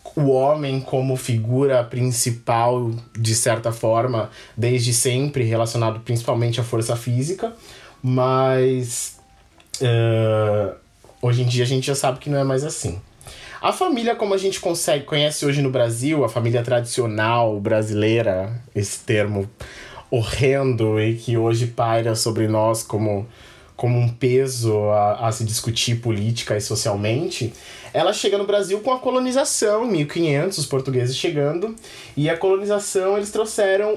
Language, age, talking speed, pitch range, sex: Portuguese, 20-39, 140 wpm, 115-170 Hz, male